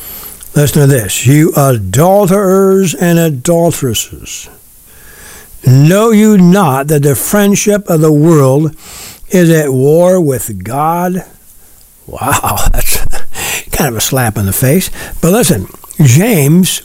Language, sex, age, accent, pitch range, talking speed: English, male, 60-79, American, 145-190 Hz, 120 wpm